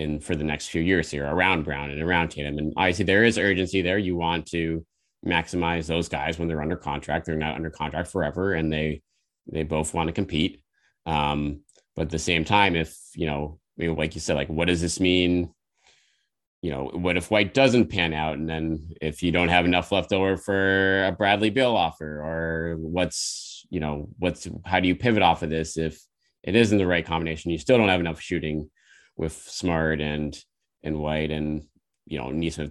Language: English